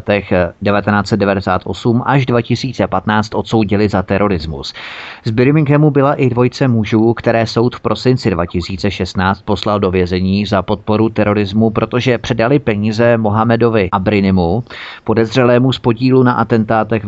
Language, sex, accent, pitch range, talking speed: Czech, male, native, 100-125 Hz, 120 wpm